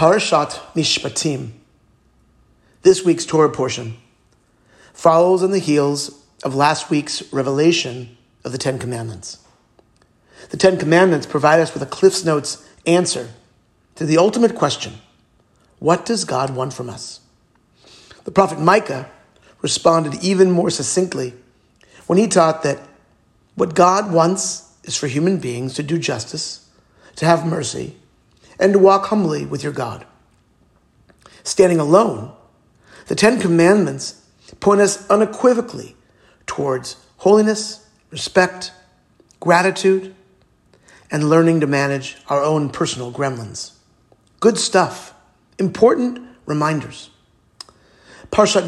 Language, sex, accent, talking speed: English, male, American, 115 wpm